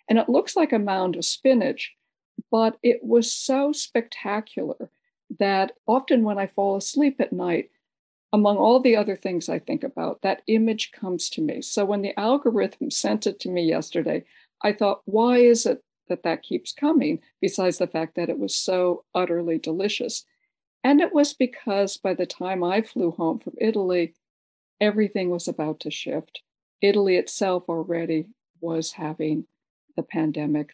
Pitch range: 175-230 Hz